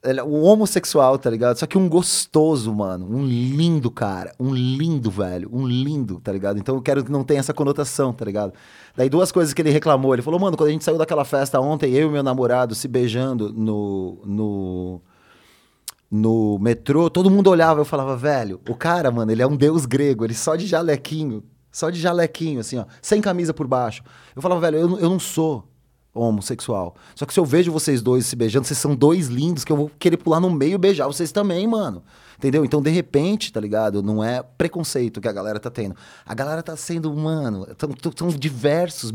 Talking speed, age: 215 wpm, 30-49